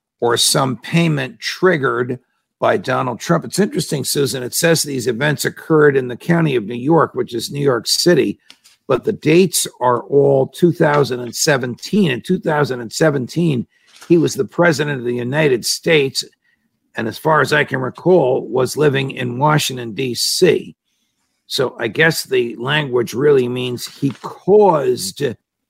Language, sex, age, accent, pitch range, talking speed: English, male, 50-69, American, 120-155 Hz, 145 wpm